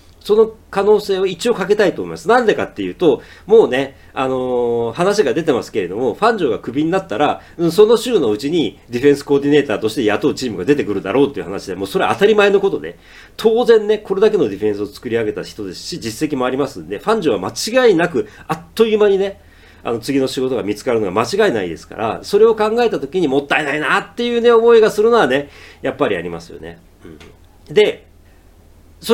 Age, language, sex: 40-59, Japanese, male